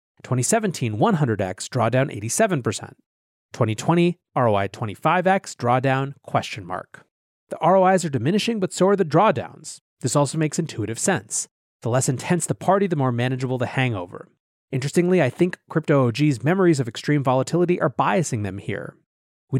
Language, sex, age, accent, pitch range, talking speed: English, male, 30-49, American, 115-155 Hz, 145 wpm